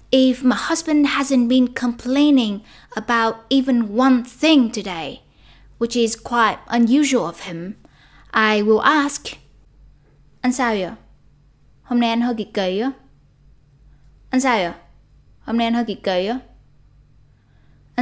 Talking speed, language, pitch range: 135 wpm, Vietnamese, 150-235 Hz